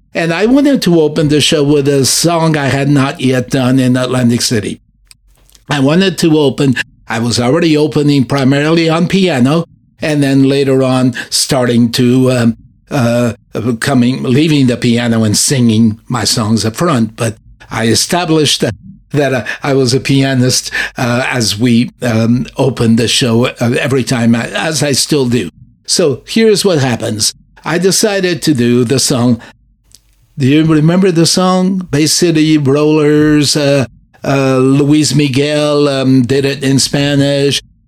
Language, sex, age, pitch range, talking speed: English, male, 60-79, 125-160 Hz, 150 wpm